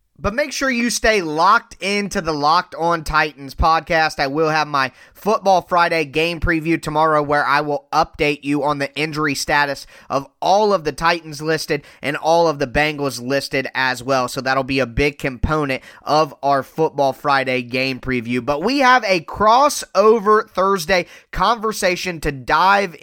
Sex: male